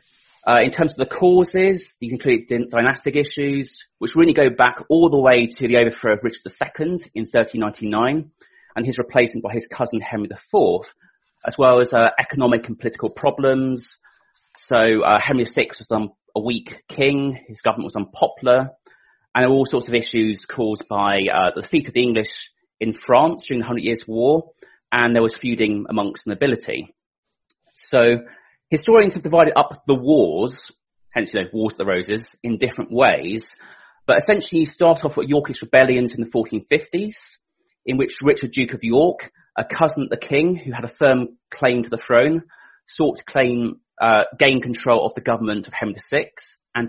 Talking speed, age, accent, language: 185 wpm, 30-49, British, English